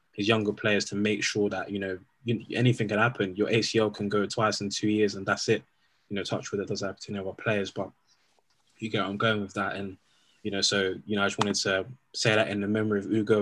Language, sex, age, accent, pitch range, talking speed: English, male, 20-39, British, 100-115 Hz, 265 wpm